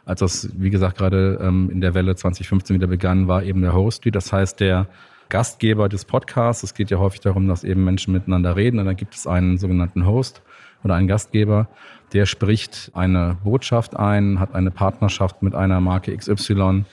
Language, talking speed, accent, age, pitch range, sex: German, 190 wpm, German, 40-59, 95-105 Hz, male